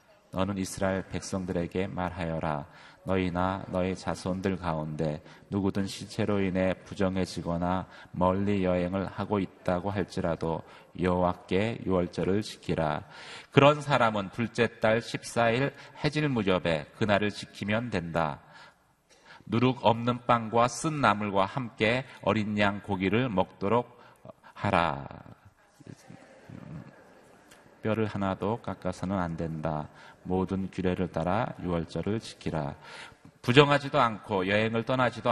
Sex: male